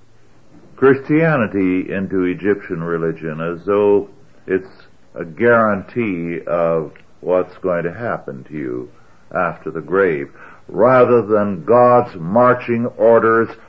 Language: English